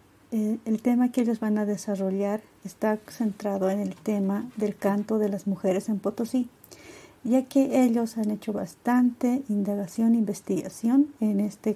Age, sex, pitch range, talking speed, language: 50-69, female, 200-230 Hz, 160 wpm, Spanish